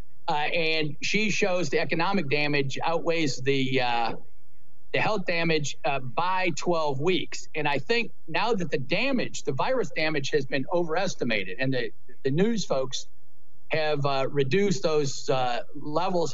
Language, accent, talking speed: English, American, 150 wpm